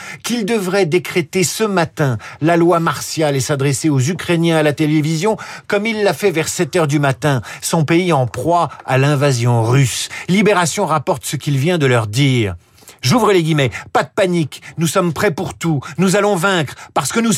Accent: French